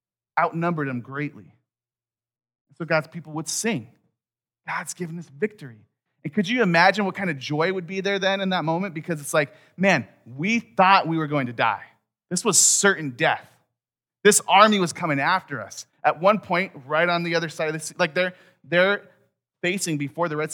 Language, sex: English, male